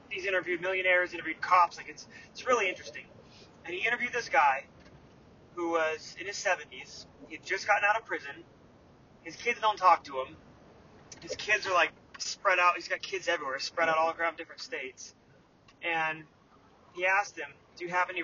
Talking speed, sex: 190 wpm, male